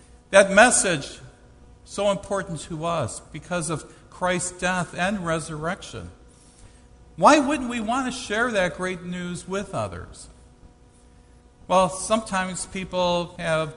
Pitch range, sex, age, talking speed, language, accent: 160-205 Hz, male, 60-79, 120 wpm, English, American